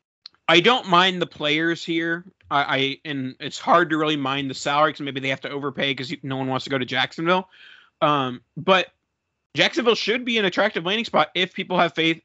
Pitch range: 130-165 Hz